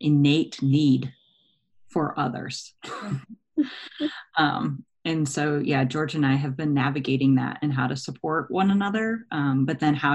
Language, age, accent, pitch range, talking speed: English, 30-49, American, 145-175 Hz, 150 wpm